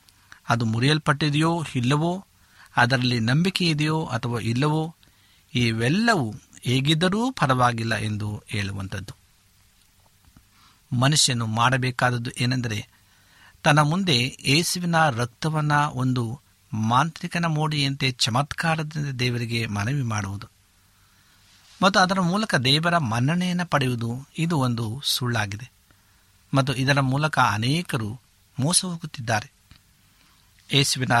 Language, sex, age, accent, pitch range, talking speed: Kannada, male, 50-69, native, 105-150 Hz, 80 wpm